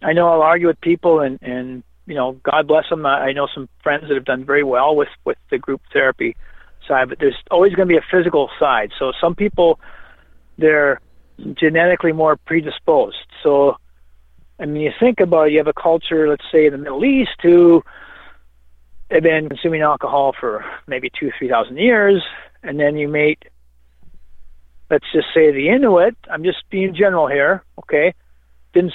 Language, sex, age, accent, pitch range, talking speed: English, male, 40-59, American, 135-175 Hz, 180 wpm